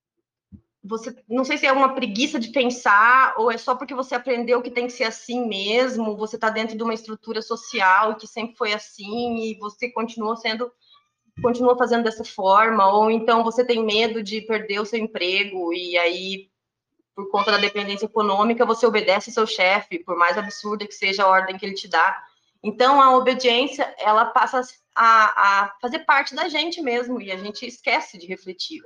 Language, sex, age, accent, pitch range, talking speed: Portuguese, female, 20-39, Brazilian, 195-240 Hz, 190 wpm